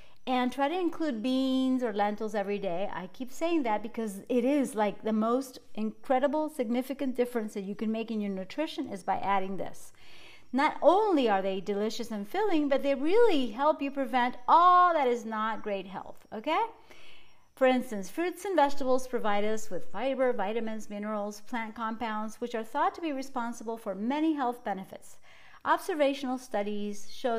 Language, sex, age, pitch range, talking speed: English, female, 40-59, 210-275 Hz, 175 wpm